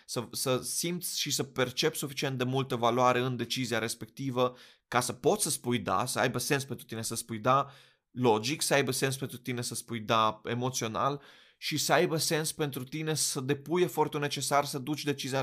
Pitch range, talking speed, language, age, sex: 115-145 Hz, 195 wpm, Romanian, 20-39, male